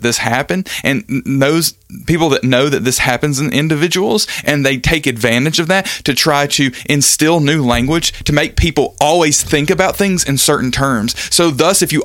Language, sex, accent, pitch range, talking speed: English, male, American, 130-165 Hz, 190 wpm